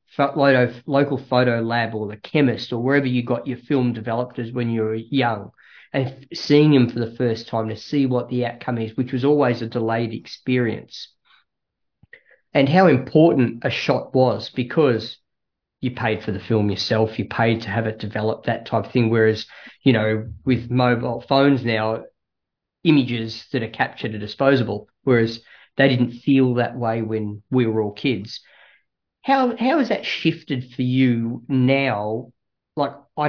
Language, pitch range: English, 115-135 Hz